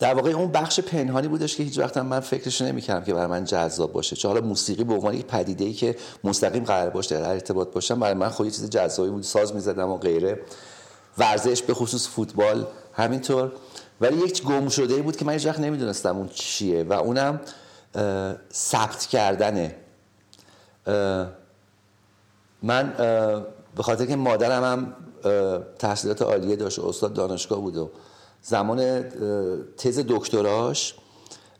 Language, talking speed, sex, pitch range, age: Persian, 150 wpm, male, 100-125 Hz, 50-69